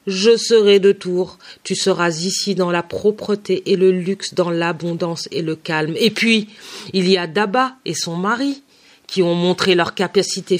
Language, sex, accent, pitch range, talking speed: French, female, French, 165-200 Hz, 190 wpm